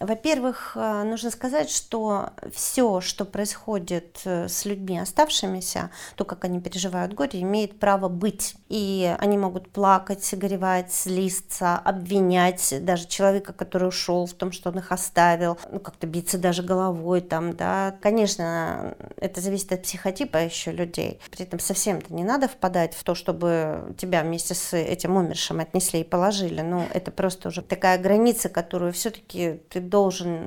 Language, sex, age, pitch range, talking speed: Russian, female, 40-59, 175-200 Hz, 150 wpm